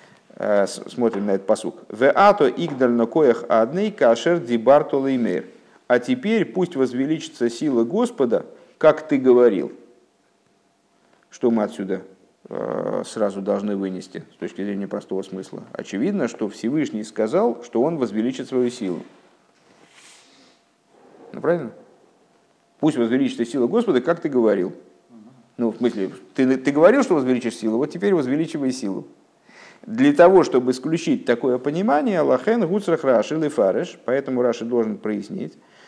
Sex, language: male, Russian